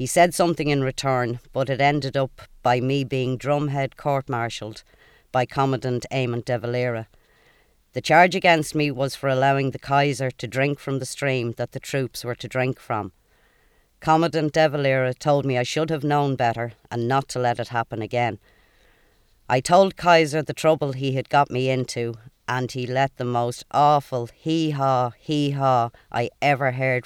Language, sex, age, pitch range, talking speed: English, female, 50-69, 120-145 Hz, 175 wpm